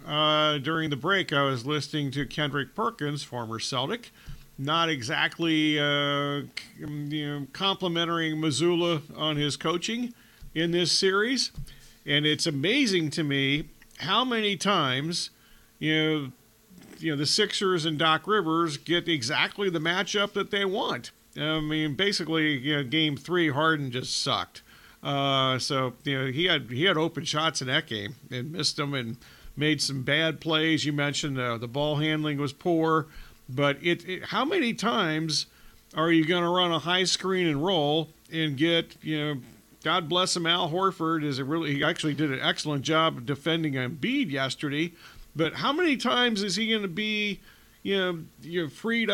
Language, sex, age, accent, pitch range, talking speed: English, male, 40-59, American, 145-180 Hz, 170 wpm